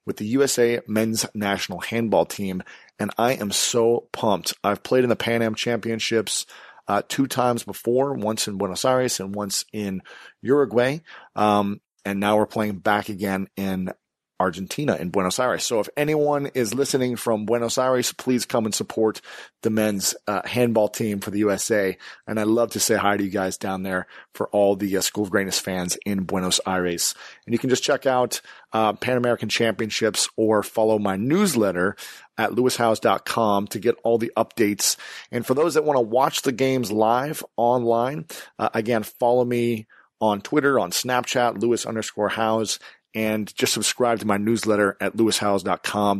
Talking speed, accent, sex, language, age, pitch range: 175 wpm, American, male, English, 30-49, 100-120 Hz